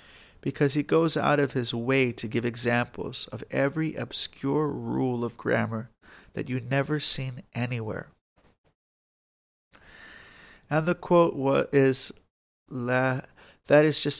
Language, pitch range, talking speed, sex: English, 120-150 Hz, 125 wpm, male